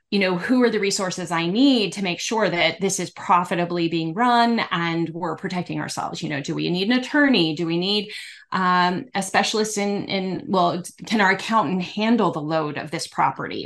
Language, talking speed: English, 200 wpm